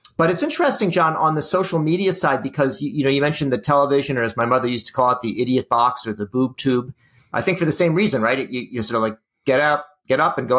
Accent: American